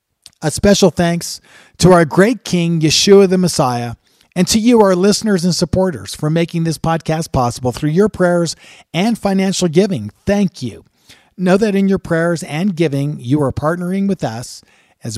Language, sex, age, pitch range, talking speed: English, male, 50-69, 135-180 Hz, 170 wpm